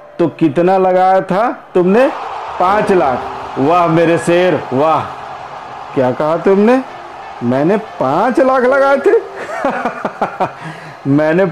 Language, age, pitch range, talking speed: Hindi, 50-69, 165-210 Hz, 105 wpm